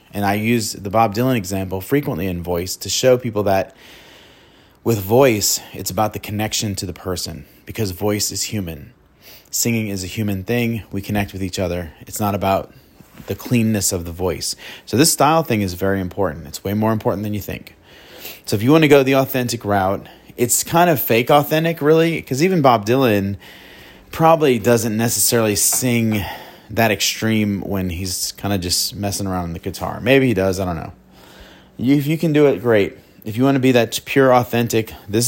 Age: 30-49